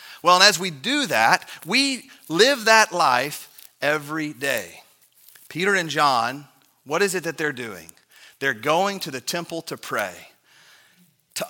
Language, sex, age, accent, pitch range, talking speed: English, male, 40-59, American, 150-185 Hz, 150 wpm